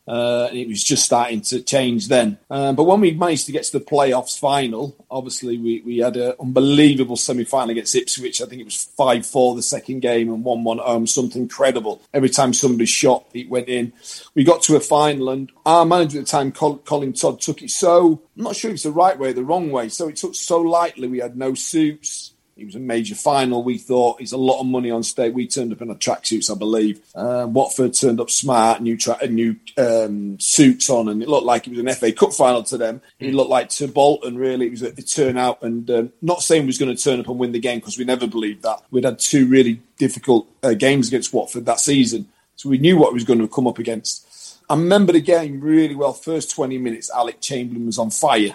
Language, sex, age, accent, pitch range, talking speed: English, male, 40-59, British, 120-145 Hz, 245 wpm